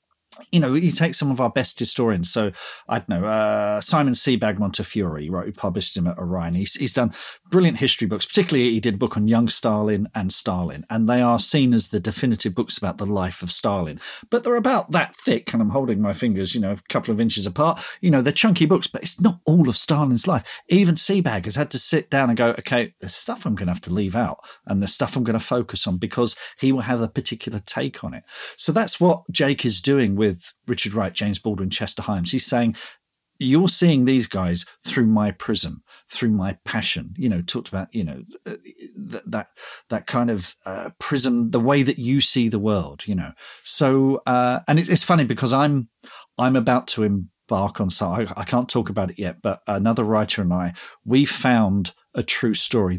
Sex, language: male, English